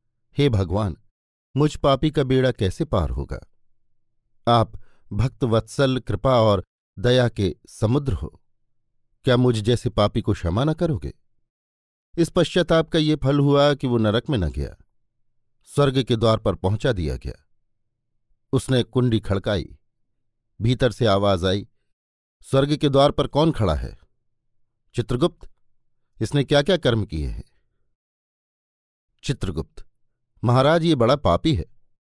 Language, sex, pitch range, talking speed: Hindi, male, 105-135 Hz, 135 wpm